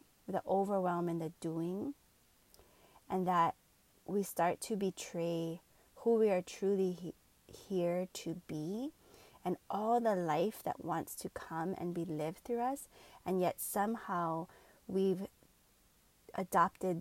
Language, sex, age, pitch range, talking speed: English, female, 30-49, 175-230 Hz, 125 wpm